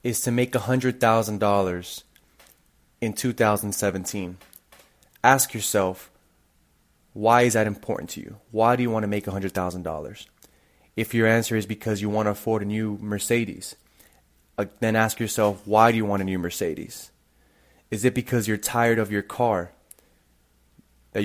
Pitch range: 95-120 Hz